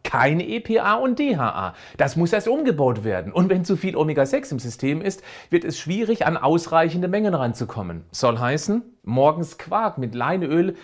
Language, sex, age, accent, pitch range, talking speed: German, male, 40-59, German, 125-170 Hz, 170 wpm